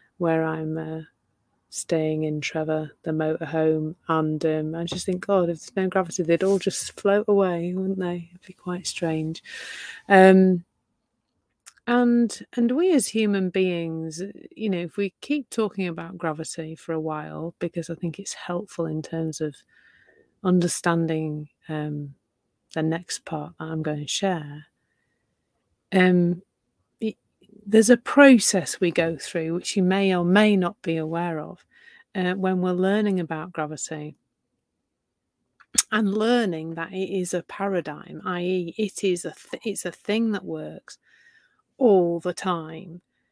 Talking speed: 145 wpm